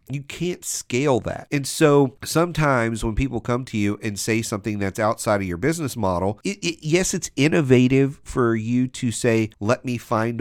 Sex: male